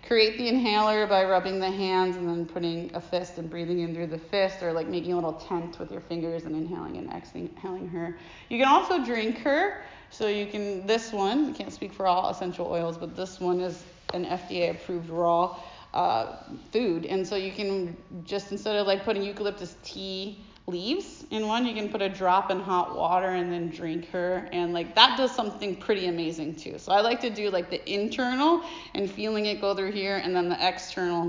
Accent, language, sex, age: American, English, female, 30-49